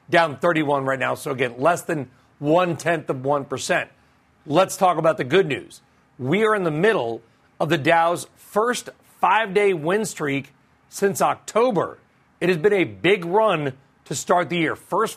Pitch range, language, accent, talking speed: 140-180 Hz, English, American, 165 wpm